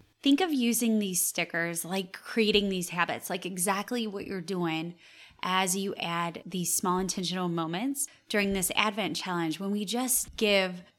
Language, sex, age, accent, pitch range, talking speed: English, female, 20-39, American, 180-225 Hz, 160 wpm